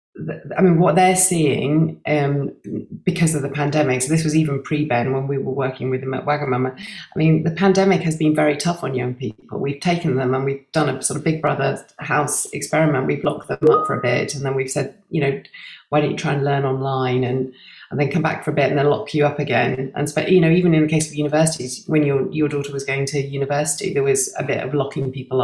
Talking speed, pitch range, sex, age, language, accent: 250 wpm, 135-160 Hz, female, 30-49, English, British